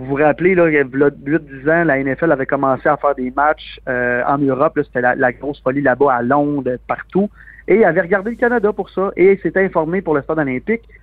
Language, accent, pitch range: French, Canadian, 140-180 Hz